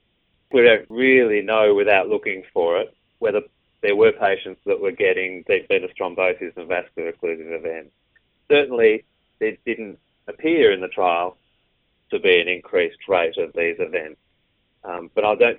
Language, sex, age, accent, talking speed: English, male, 30-49, Australian, 160 wpm